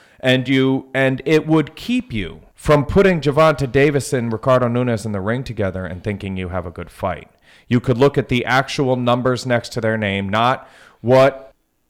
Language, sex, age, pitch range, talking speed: English, male, 30-49, 105-130 Hz, 190 wpm